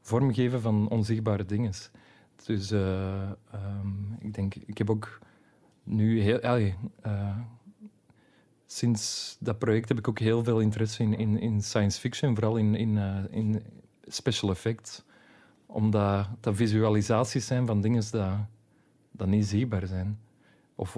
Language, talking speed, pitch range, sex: Dutch, 135 wpm, 105-115 Hz, male